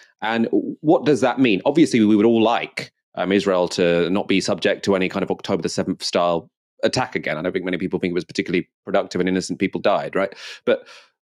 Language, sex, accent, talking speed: English, male, British, 225 wpm